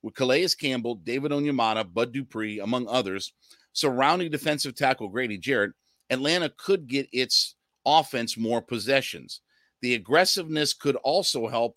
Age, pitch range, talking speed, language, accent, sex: 50-69, 115-145 Hz, 135 wpm, English, American, male